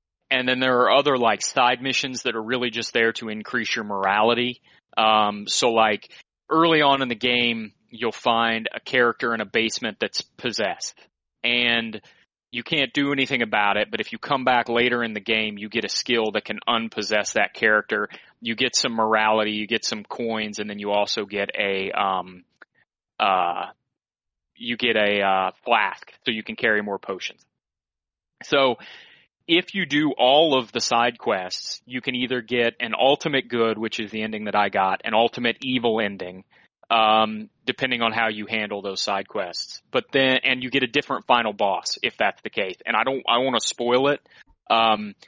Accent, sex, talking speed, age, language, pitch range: American, male, 190 wpm, 30-49, English, 110-125 Hz